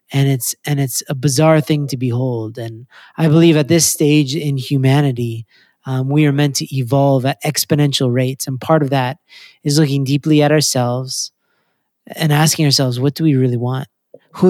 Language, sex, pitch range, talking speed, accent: English, male, 135-160 Hz, 180 wpm, American